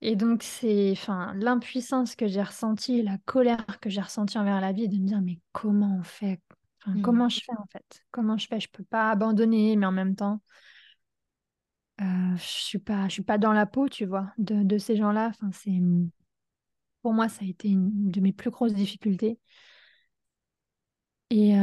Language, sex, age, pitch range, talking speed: French, female, 20-39, 200-230 Hz, 185 wpm